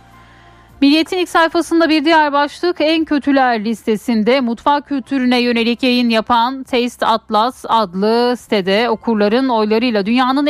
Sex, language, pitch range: female, Turkish, 200-260 Hz